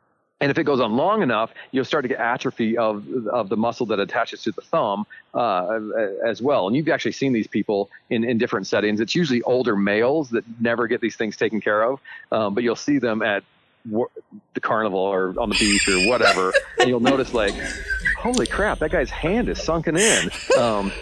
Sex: male